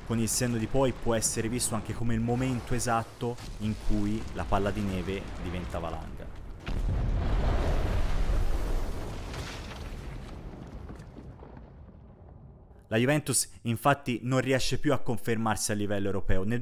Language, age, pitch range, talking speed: Italian, 30-49, 105-125 Hz, 120 wpm